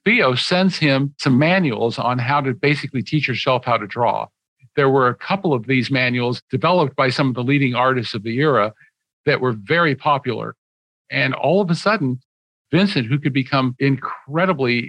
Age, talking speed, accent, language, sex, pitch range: 50-69, 180 wpm, American, English, male, 125-150 Hz